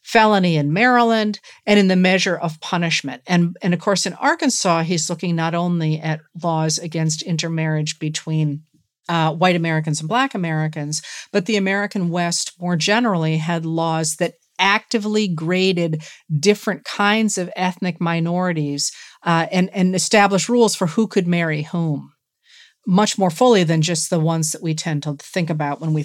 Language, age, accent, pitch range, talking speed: English, 40-59, American, 155-205 Hz, 165 wpm